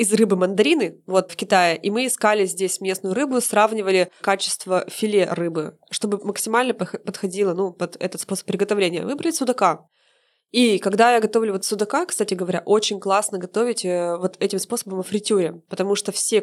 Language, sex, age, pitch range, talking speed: Russian, female, 20-39, 185-225 Hz, 165 wpm